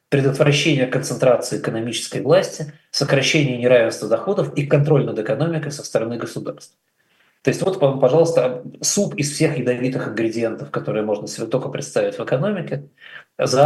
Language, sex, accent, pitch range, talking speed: Russian, male, native, 125-150 Hz, 135 wpm